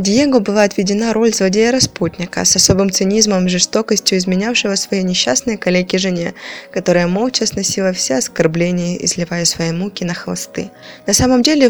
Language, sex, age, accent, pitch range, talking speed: Russian, female, 20-39, native, 180-210 Hz, 140 wpm